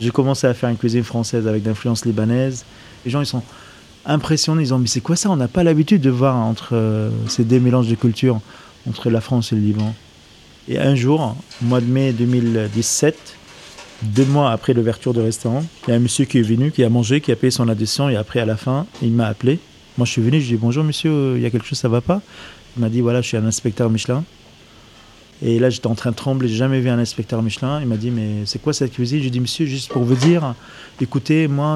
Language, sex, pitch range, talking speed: French, male, 115-145 Hz, 255 wpm